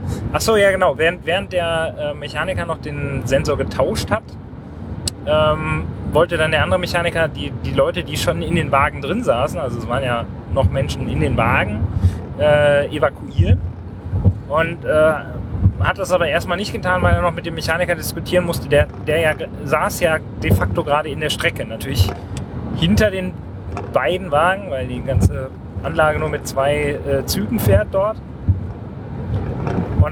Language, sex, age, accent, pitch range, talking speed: German, male, 30-49, German, 100-145 Hz, 165 wpm